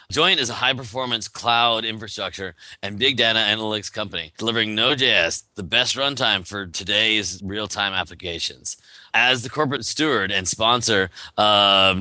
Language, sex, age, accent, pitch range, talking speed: English, male, 30-49, American, 95-115 Hz, 135 wpm